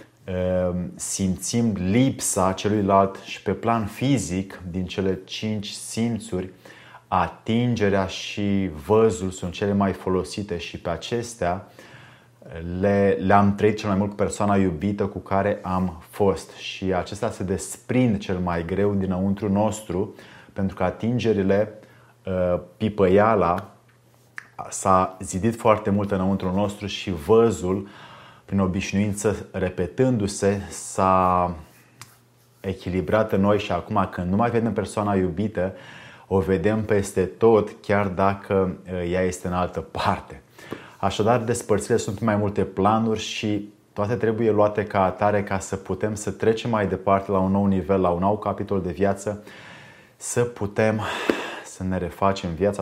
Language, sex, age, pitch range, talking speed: Romanian, male, 30-49, 95-105 Hz, 130 wpm